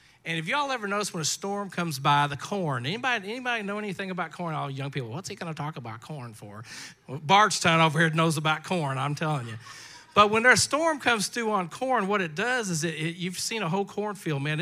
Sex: male